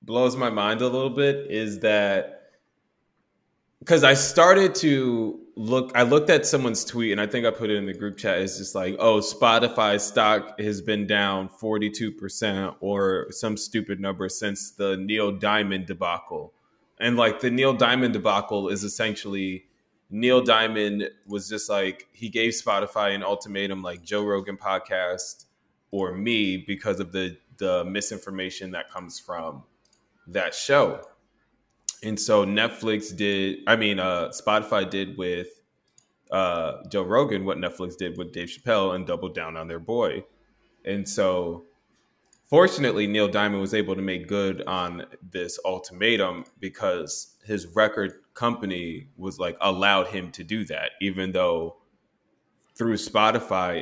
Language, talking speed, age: English, 150 wpm, 20-39